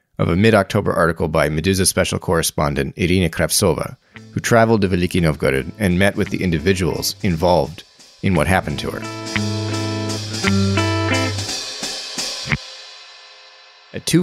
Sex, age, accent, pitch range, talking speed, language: male, 30-49, American, 85-110 Hz, 115 wpm, English